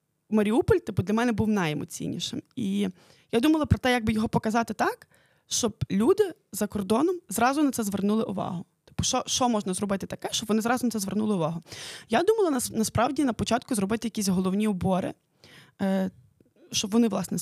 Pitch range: 195-240 Hz